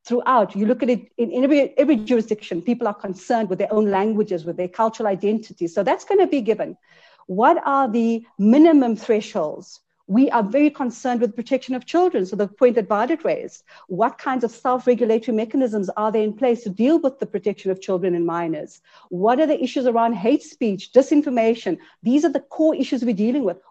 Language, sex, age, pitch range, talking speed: English, female, 50-69, 210-275 Hz, 195 wpm